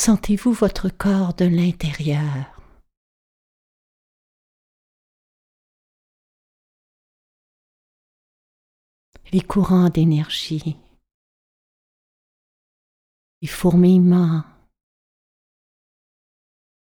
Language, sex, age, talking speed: French, female, 40-59, 35 wpm